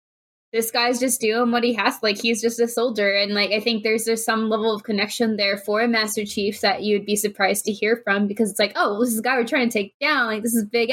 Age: 20-39